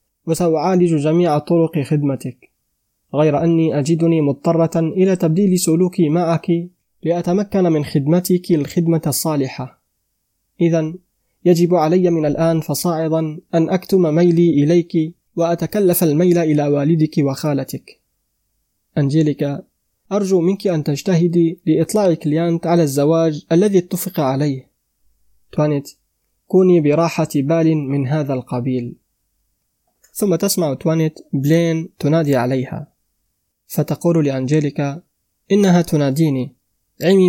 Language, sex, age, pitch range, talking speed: Arabic, male, 20-39, 135-170 Hz, 100 wpm